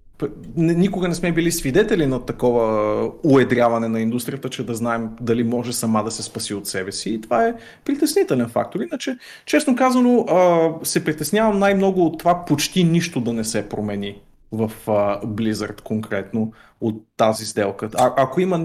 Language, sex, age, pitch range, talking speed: Bulgarian, male, 30-49, 110-145 Hz, 160 wpm